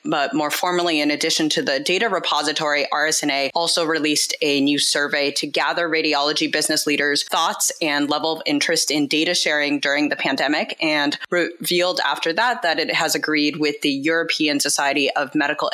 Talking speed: 170 wpm